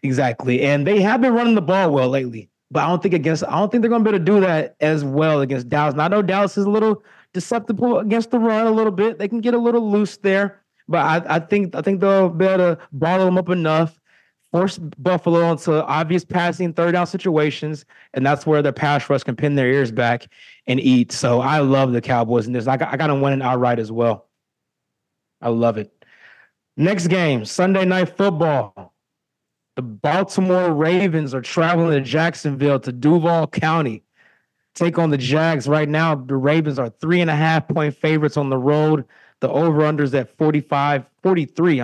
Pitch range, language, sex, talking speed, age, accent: 140-180 Hz, English, male, 205 wpm, 20-39, American